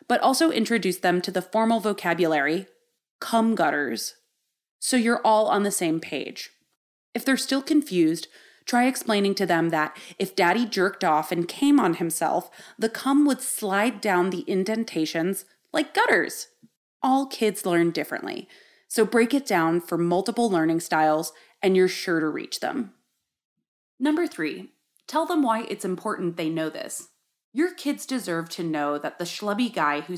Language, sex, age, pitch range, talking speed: English, female, 30-49, 165-240 Hz, 160 wpm